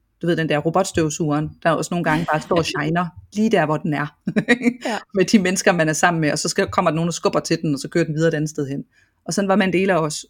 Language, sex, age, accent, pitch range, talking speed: Danish, female, 30-49, native, 155-190 Hz, 275 wpm